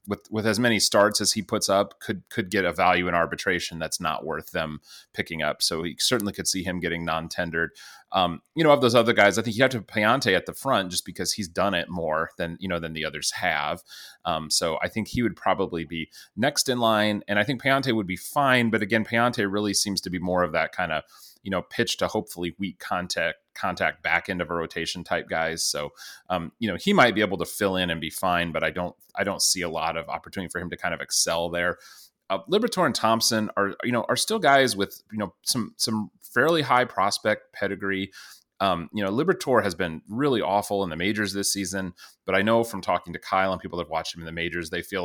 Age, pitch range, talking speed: 30-49, 85-110 Hz, 245 wpm